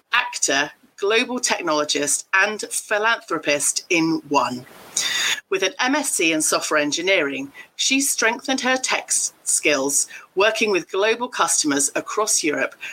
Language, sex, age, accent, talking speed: English, female, 40-59, British, 110 wpm